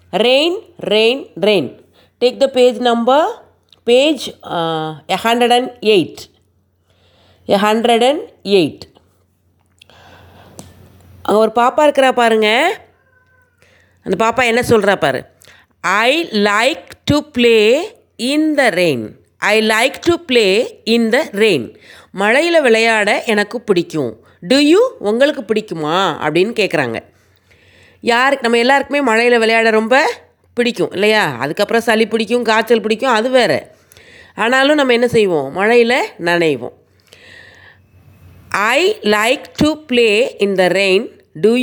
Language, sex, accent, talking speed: Tamil, female, native, 105 wpm